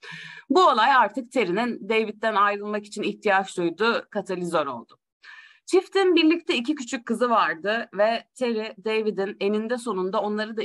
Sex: female